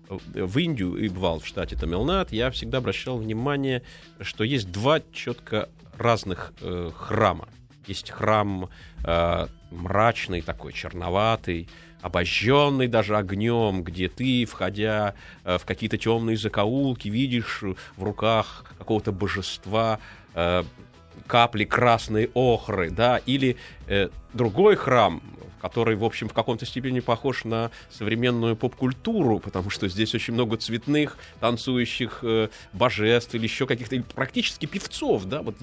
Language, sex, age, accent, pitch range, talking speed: Russian, male, 30-49, native, 100-135 Hz, 130 wpm